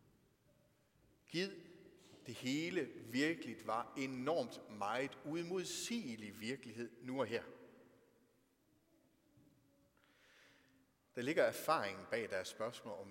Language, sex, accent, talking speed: Danish, male, native, 85 wpm